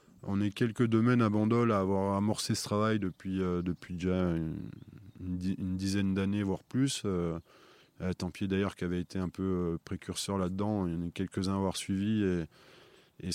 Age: 20-39